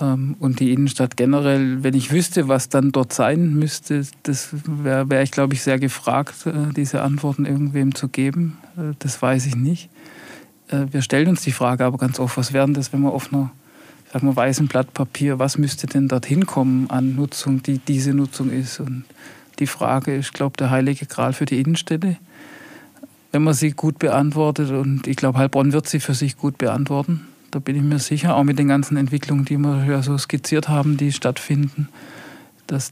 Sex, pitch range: male, 135-150 Hz